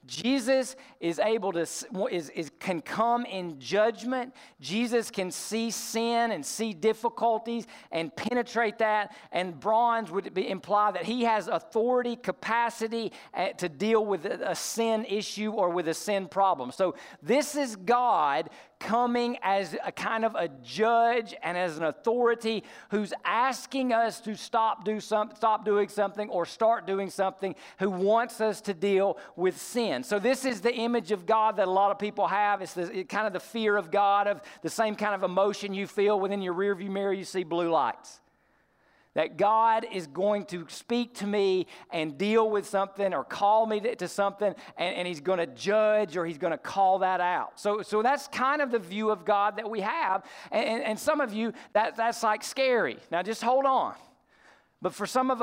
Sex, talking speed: male, 190 wpm